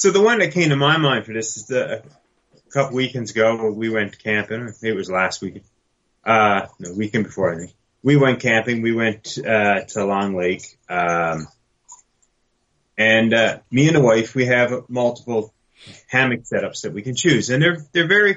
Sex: male